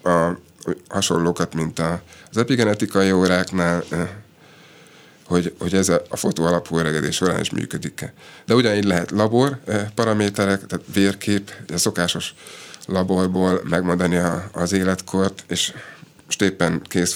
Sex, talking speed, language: male, 110 wpm, Hungarian